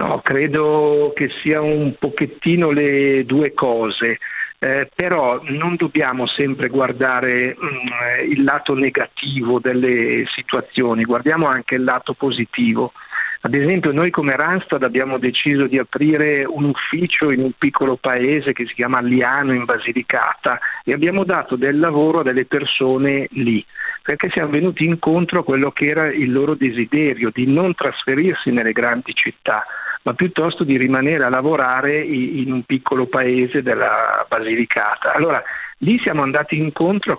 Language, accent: Italian, native